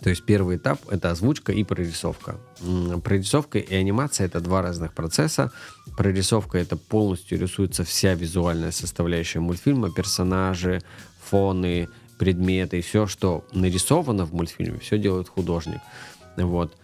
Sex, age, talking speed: male, 20-39, 120 wpm